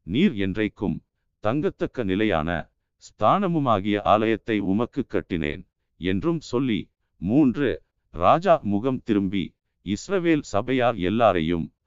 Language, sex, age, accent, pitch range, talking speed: Tamil, male, 50-69, native, 95-125 Hz, 85 wpm